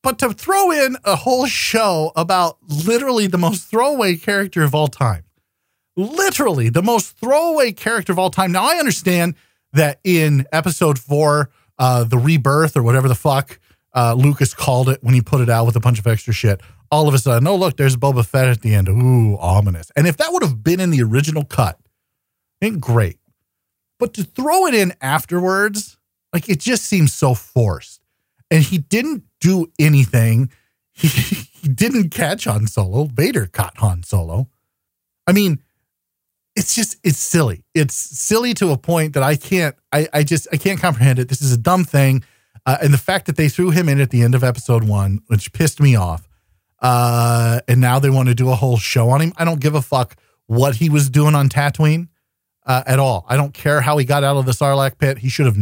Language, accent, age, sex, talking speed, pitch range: English, American, 40-59, male, 205 wpm, 120-170 Hz